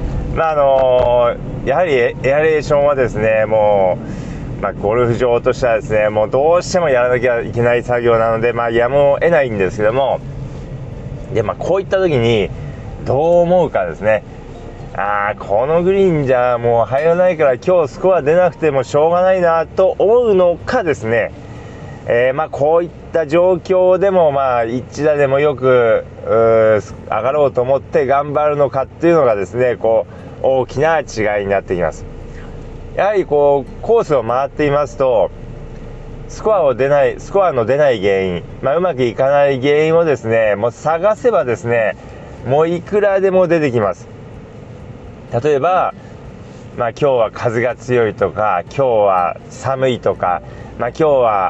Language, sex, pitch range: Japanese, male, 115-155 Hz